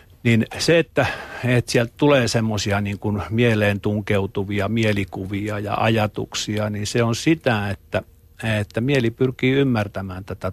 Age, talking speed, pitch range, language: 50-69, 135 wpm, 95-120 Hz, Finnish